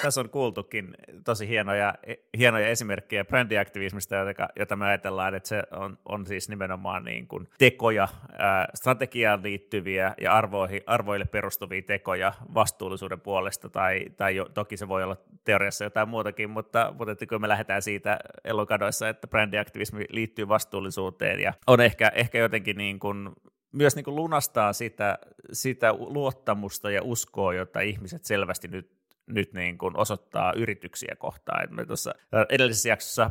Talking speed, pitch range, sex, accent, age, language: 125 wpm, 100-115 Hz, male, native, 30-49, Finnish